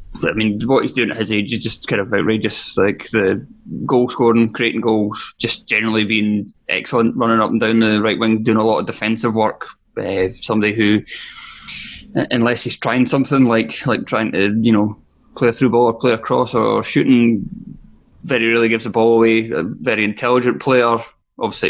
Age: 10-29